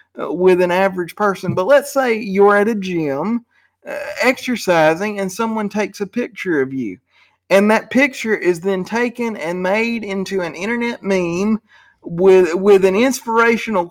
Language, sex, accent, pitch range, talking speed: English, male, American, 190-235 Hz, 155 wpm